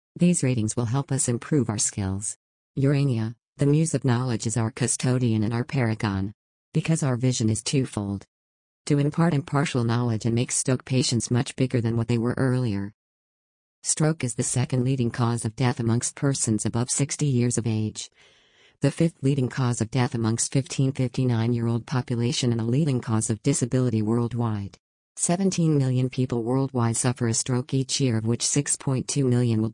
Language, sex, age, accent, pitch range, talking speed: English, female, 50-69, American, 115-135 Hz, 175 wpm